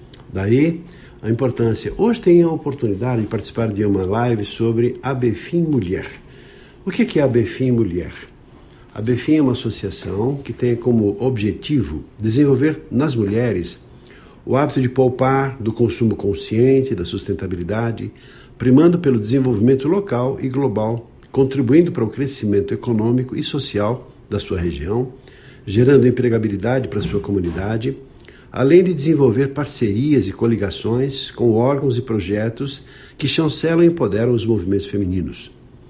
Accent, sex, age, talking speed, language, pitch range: Brazilian, male, 50-69, 135 wpm, Portuguese, 110-135 Hz